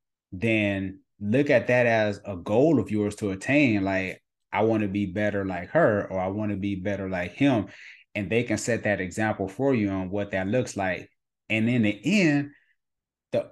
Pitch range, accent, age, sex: 95-110 Hz, American, 30-49, male